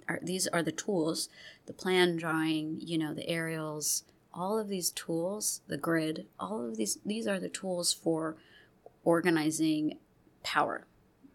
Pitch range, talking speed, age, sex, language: 155-180 Hz, 145 wpm, 30-49, female, English